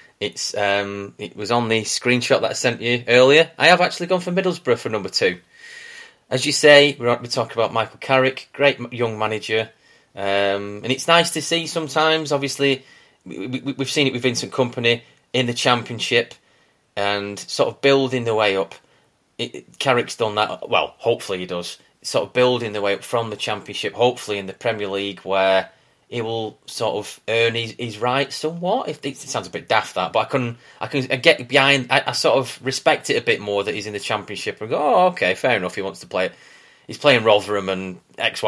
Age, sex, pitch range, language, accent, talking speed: 30-49, male, 105-135 Hz, English, British, 210 wpm